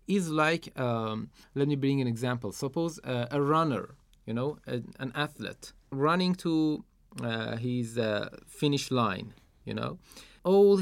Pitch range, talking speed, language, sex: 125-160 Hz, 145 wpm, Persian, male